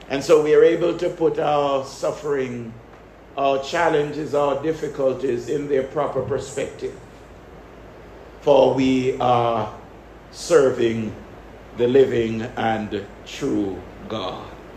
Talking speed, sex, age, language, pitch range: 105 wpm, male, 60-79, English, 145-195 Hz